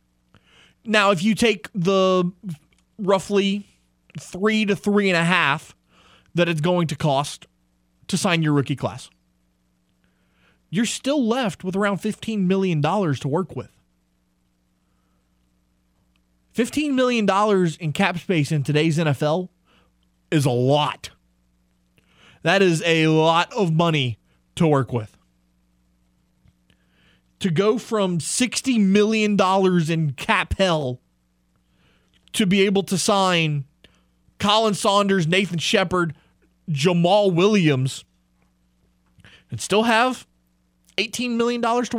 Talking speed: 110 wpm